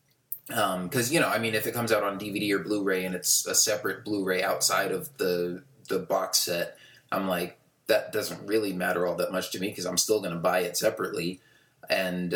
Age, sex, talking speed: 20-39, male, 220 wpm